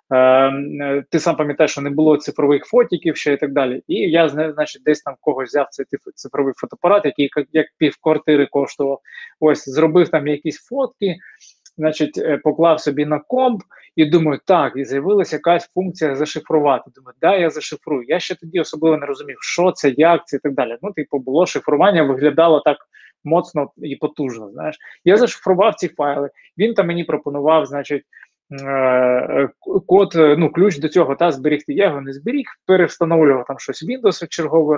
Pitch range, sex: 145-170 Hz, male